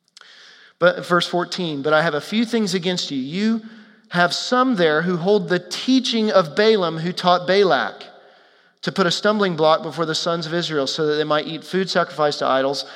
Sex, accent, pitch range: male, American, 160-215 Hz